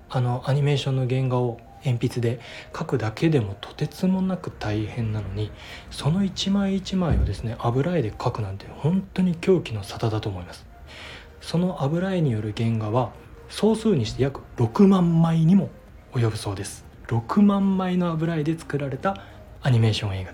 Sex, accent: male, native